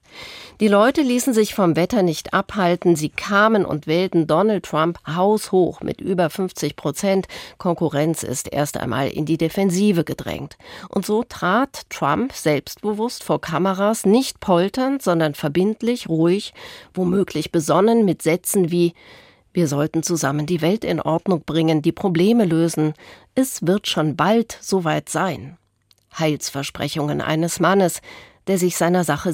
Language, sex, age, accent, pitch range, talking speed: German, female, 40-59, German, 160-200 Hz, 140 wpm